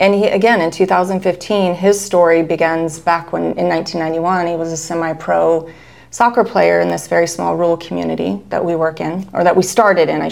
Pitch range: 165-185 Hz